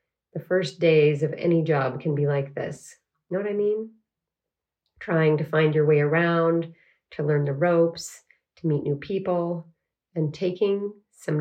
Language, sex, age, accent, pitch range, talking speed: English, female, 30-49, American, 155-195 Hz, 165 wpm